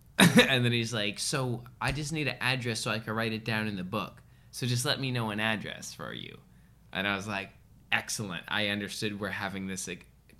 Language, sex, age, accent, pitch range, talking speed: English, male, 20-39, American, 110-140 Hz, 225 wpm